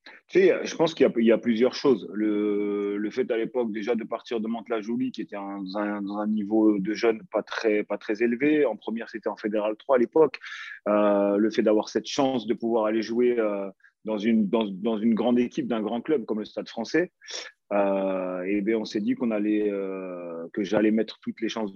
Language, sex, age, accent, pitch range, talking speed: French, male, 30-49, French, 105-120 Hz, 235 wpm